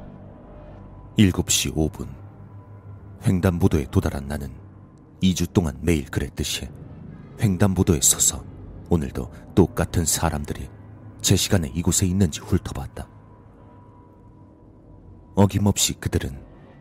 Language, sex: Korean, male